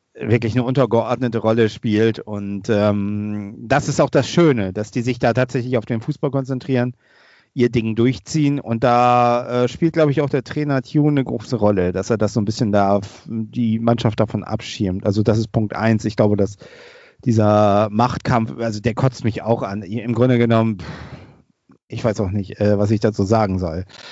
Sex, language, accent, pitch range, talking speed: male, German, German, 110-130 Hz, 190 wpm